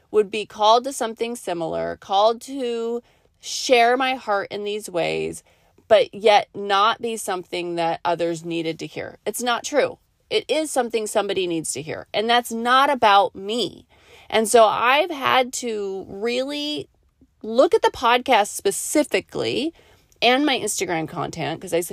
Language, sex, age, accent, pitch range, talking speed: English, female, 30-49, American, 200-260 Hz, 155 wpm